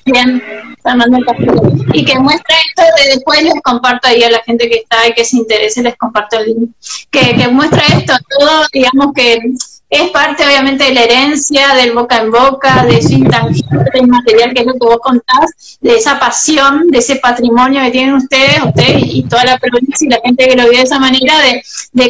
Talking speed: 205 wpm